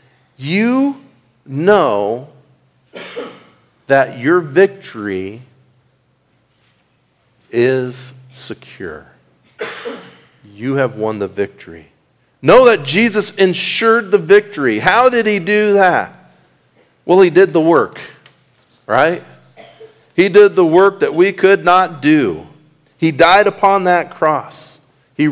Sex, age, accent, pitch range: male, 50-69, American, 150-200 Hz